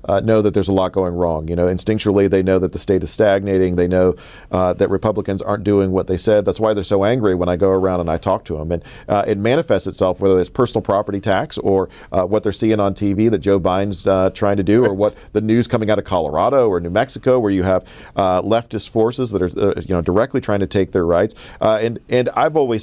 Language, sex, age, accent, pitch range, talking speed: English, male, 40-59, American, 95-110 Hz, 260 wpm